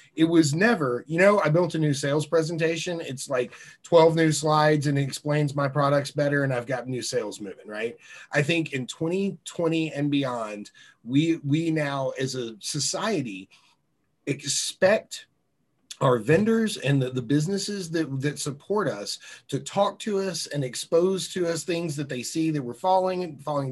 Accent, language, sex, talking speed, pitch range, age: American, English, male, 170 wpm, 135-170 Hz, 30-49